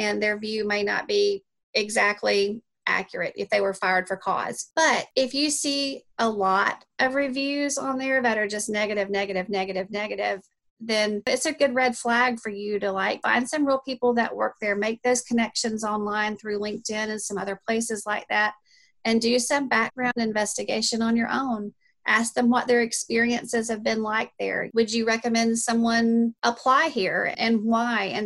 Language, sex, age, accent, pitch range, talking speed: English, female, 30-49, American, 205-235 Hz, 185 wpm